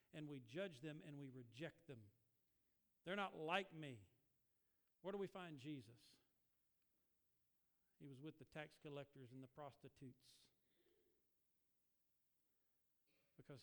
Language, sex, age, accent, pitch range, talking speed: English, male, 50-69, American, 115-145 Hz, 120 wpm